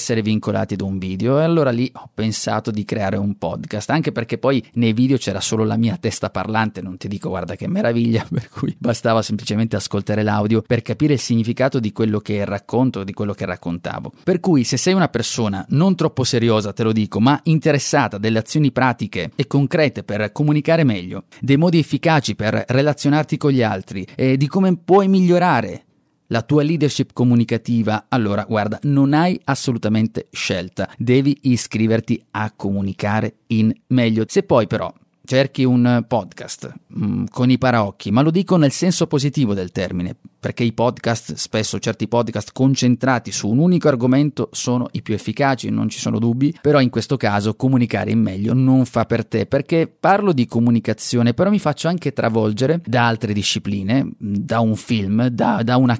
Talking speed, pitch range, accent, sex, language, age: 175 wpm, 110-140 Hz, native, male, Italian, 30-49